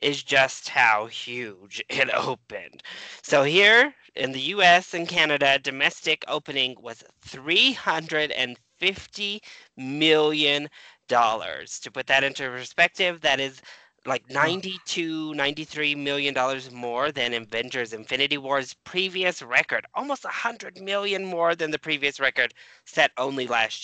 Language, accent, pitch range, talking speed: English, American, 130-170 Hz, 120 wpm